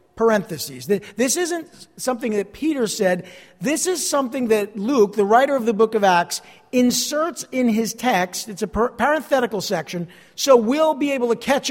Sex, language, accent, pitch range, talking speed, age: male, English, American, 200-245 Hz, 170 wpm, 50-69